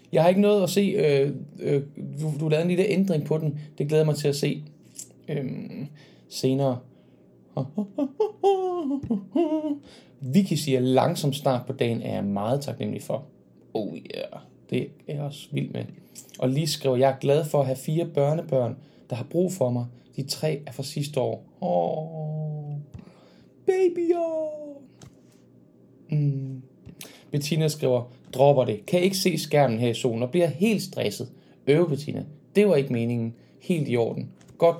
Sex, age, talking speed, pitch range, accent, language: male, 20-39, 165 wpm, 130-170 Hz, native, Danish